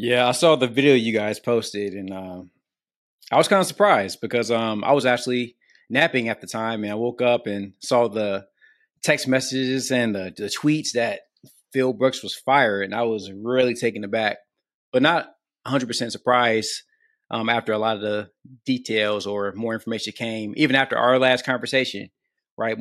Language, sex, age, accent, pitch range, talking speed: English, male, 20-39, American, 105-130 Hz, 180 wpm